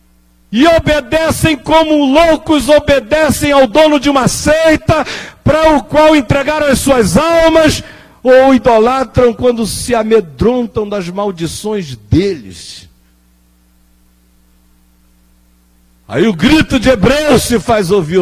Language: Portuguese